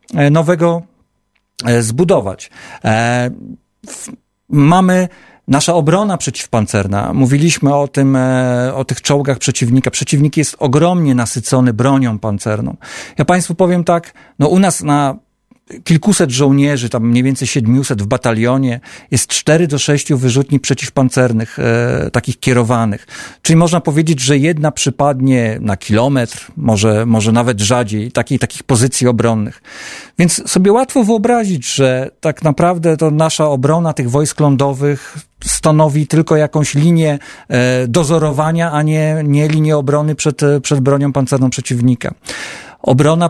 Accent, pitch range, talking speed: native, 125-155 Hz, 125 wpm